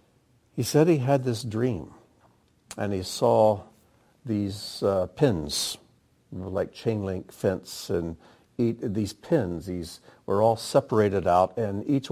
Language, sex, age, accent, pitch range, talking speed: English, male, 60-79, American, 95-120 Hz, 125 wpm